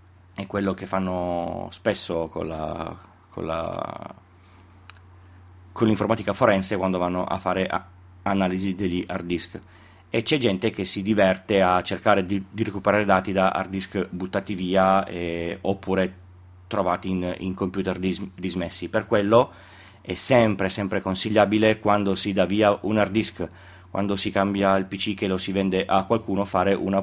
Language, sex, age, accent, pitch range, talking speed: Italian, male, 30-49, native, 90-105 Hz, 160 wpm